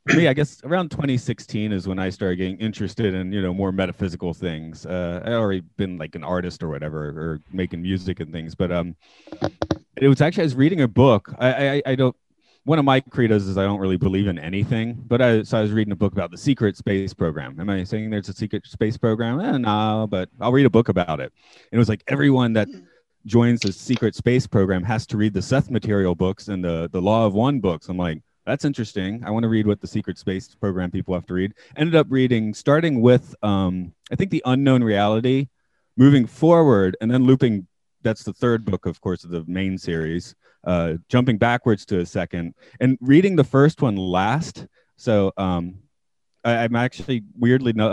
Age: 30-49